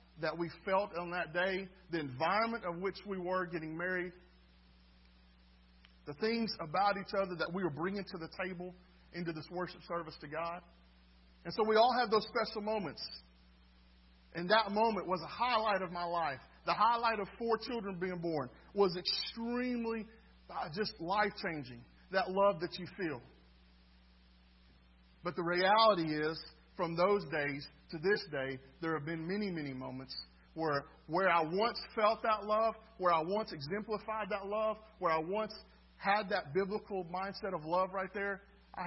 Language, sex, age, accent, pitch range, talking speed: English, male, 40-59, American, 155-210 Hz, 165 wpm